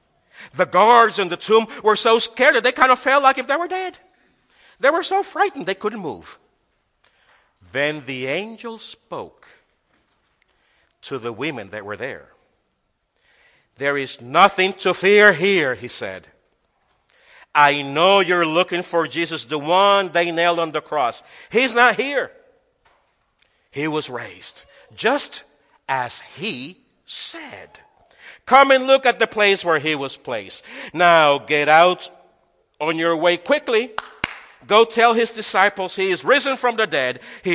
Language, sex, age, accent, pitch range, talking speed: English, male, 50-69, American, 160-245 Hz, 150 wpm